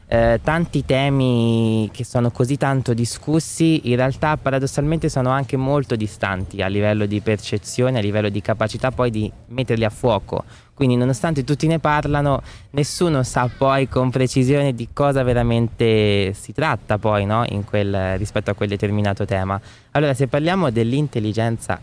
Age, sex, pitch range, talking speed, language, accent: 20-39, male, 105-125 Hz, 155 wpm, Italian, native